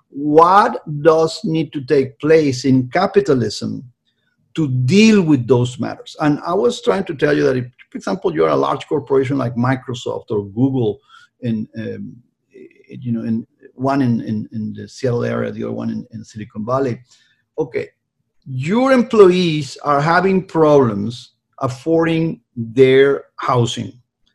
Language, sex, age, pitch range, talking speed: English, male, 50-69, 125-175 Hz, 150 wpm